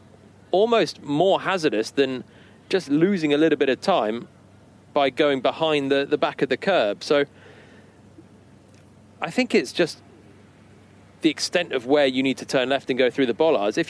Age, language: 30-49, English